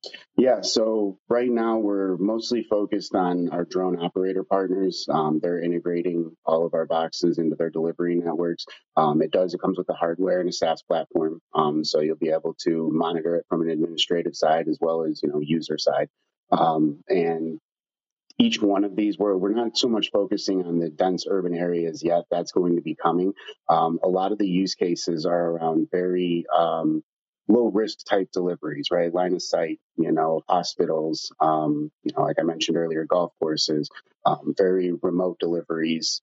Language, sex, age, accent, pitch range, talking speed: English, male, 30-49, American, 80-95 Hz, 185 wpm